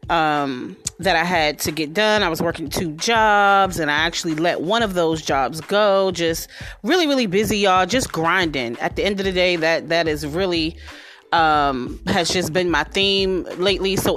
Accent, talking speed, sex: American, 195 wpm, female